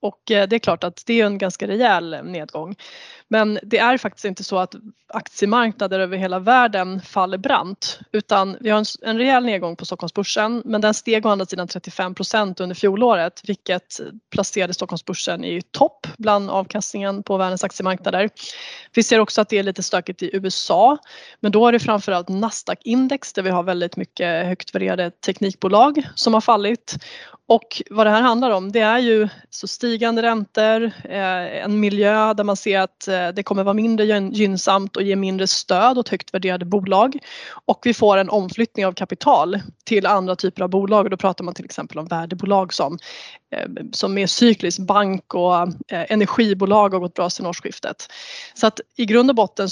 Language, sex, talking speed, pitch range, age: Swedish, female, 175 wpm, 185-225 Hz, 20-39